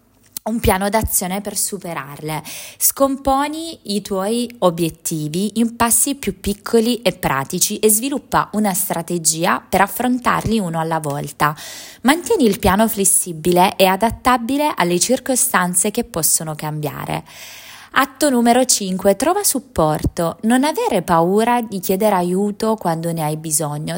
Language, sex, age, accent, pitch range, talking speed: Italian, female, 20-39, native, 170-235 Hz, 125 wpm